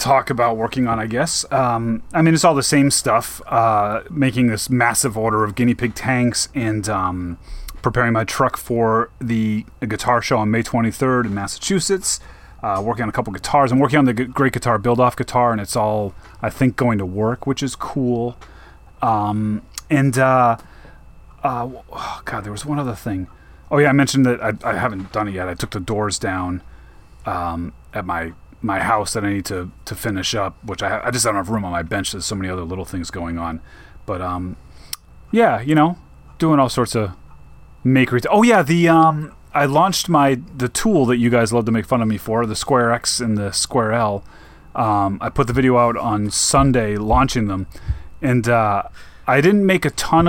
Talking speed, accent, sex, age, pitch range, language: 210 wpm, American, male, 30-49, 100-135 Hz, English